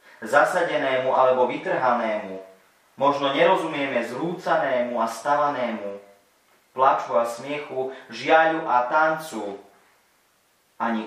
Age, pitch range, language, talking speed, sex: 30-49, 110-140 Hz, Slovak, 80 wpm, male